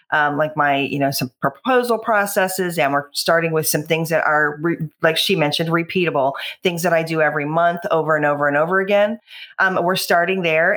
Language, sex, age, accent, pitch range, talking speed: English, female, 40-59, American, 155-195 Hz, 205 wpm